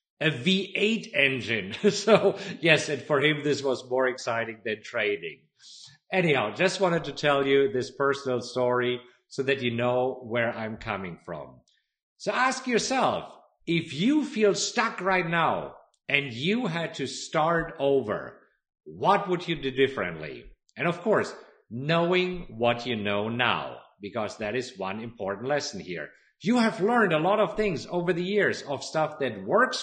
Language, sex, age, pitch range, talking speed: English, male, 50-69, 135-205 Hz, 160 wpm